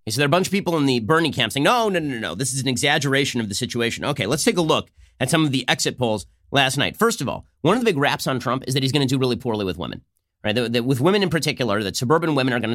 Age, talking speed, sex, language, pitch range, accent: 30-49, 330 wpm, male, English, 120-165 Hz, American